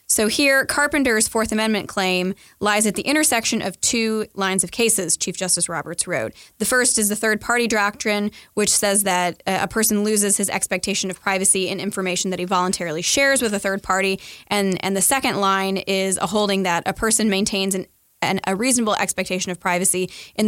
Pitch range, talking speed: 185-215 Hz, 190 wpm